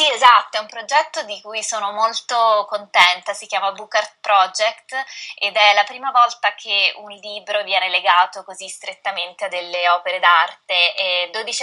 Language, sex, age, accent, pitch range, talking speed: Italian, female, 20-39, native, 180-215 Hz, 170 wpm